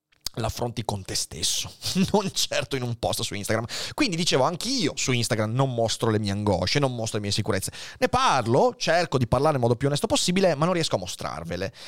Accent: native